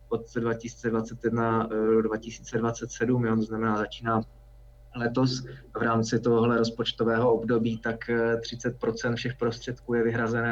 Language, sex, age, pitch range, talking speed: Czech, male, 20-39, 110-120 Hz, 110 wpm